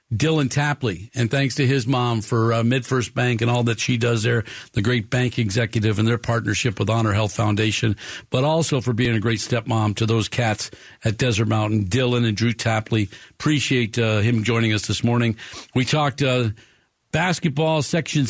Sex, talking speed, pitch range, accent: male, 185 wpm, 115-140 Hz, American